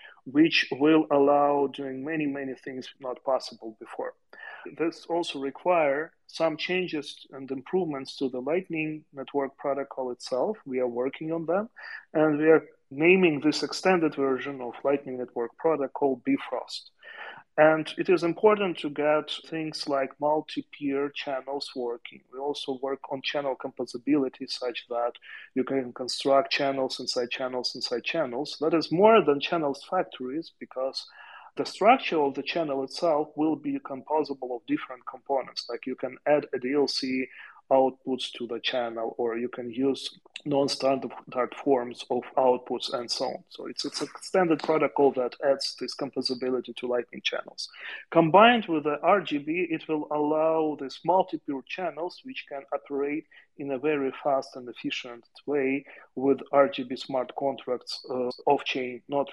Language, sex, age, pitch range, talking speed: English, male, 30-49, 130-155 Hz, 150 wpm